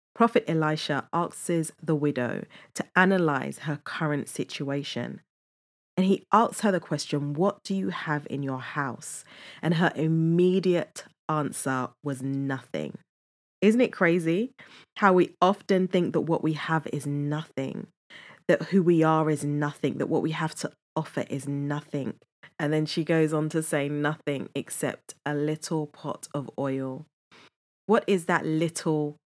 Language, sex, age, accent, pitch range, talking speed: English, female, 20-39, British, 145-170 Hz, 150 wpm